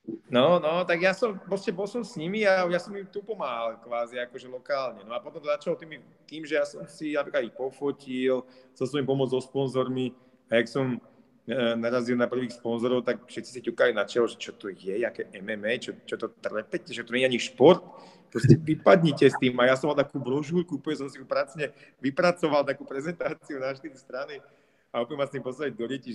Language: Czech